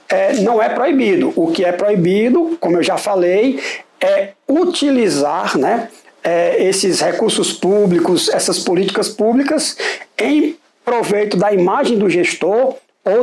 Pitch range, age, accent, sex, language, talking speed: 215-295 Hz, 60-79, Brazilian, male, Portuguese, 130 wpm